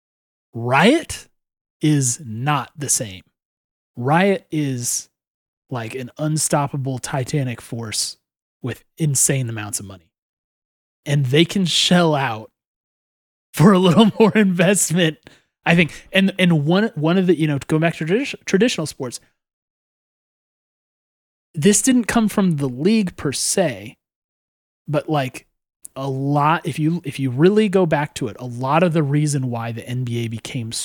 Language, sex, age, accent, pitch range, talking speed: English, male, 30-49, American, 120-160 Hz, 145 wpm